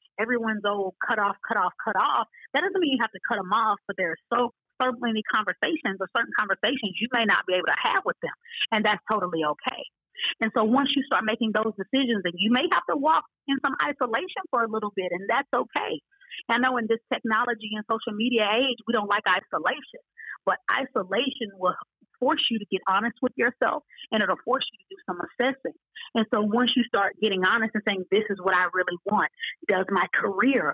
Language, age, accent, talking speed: English, 30-49, American, 220 wpm